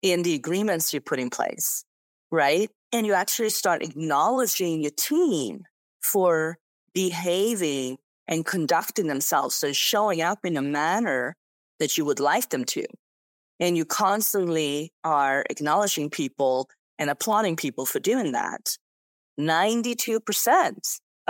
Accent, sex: American, female